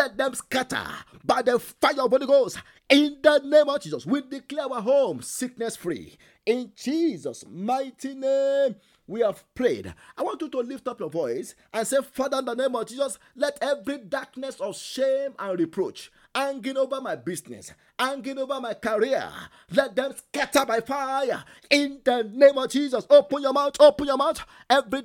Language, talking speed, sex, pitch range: English, 180 wpm, male, 245-280 Hz